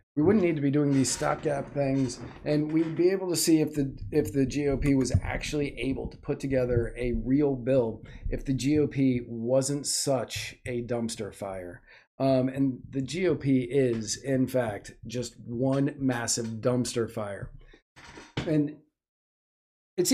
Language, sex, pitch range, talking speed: English, male, 120-140 Hz, 150 wpm